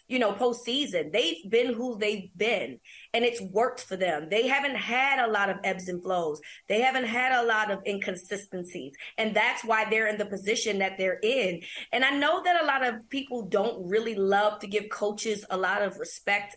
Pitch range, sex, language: 200-255 Hz, female, English